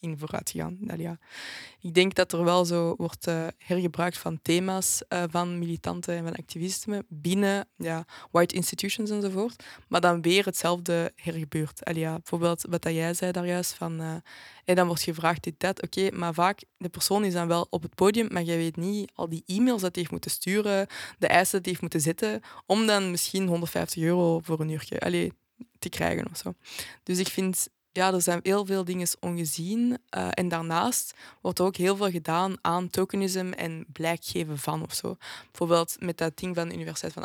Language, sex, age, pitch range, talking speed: Dutch, female, 20-39, 165-185 Hz, 200 wpm